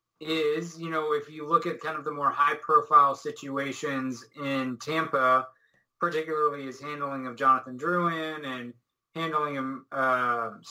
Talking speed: 150 wpm